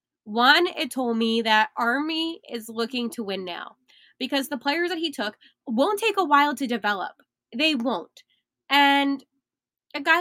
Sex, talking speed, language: female, 165 wpm, English